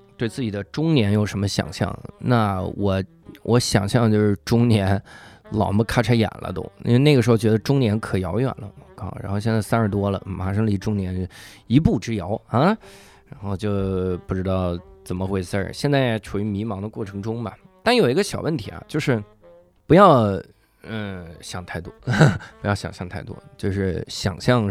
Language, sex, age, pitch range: Chinese, male, 20-39, 100-130 Hz